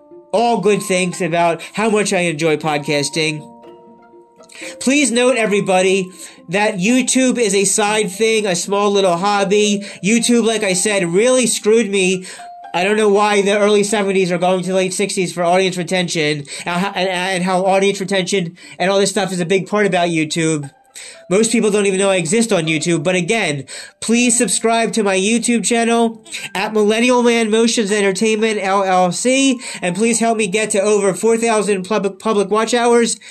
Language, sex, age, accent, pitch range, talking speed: English, male, 30-49, American, 185-225 Hz, 170 wpm